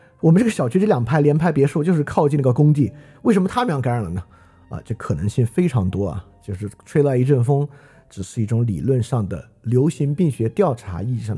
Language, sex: Chinese, male